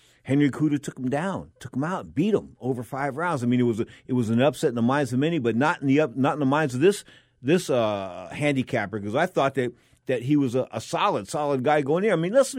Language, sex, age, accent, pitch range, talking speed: English, male, 50-69, American, 120-155 Hz, 275 wpm